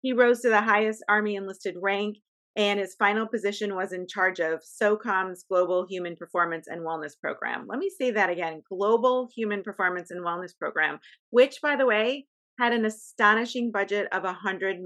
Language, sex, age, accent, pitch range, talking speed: English, female, 30-49, American, 185-235 Hz, 180 wpm